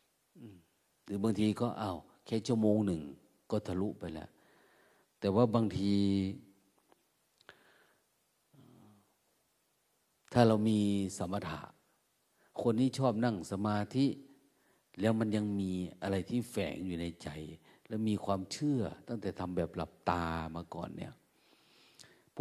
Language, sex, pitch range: Thai, male, 95-120 Hz